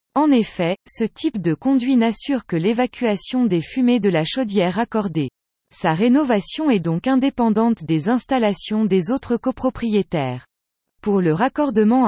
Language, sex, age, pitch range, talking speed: French, female, 20-39, 185-255 Hz, 140 wpm